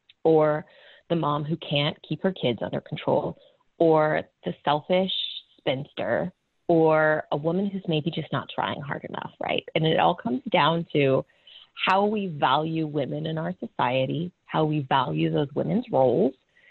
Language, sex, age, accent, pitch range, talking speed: English, female, 30-49, American, 145-190 Hz, 160 wpm